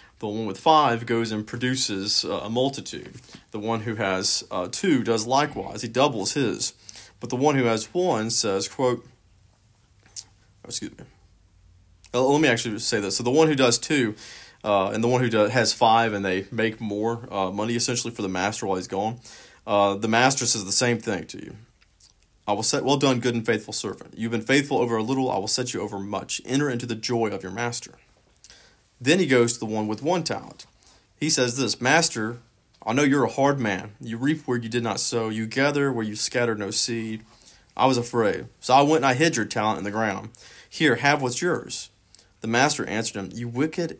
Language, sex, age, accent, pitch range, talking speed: English, male, 40-59, American, 105-130 Hz, 205 wpm